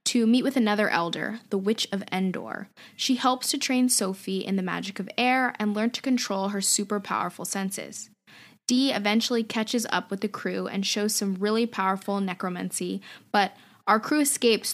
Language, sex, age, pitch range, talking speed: English, female, 10-29, 195-240 Hz, 180 wpm